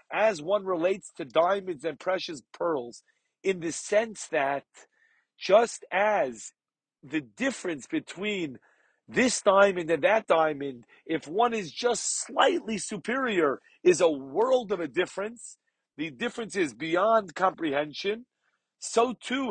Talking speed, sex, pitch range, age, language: 125 wpm, male, 170-230 Hz, 40-59, English